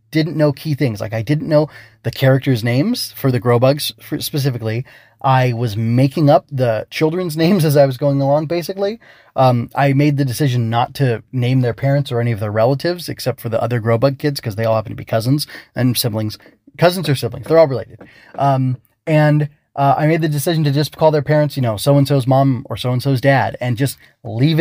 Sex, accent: male, American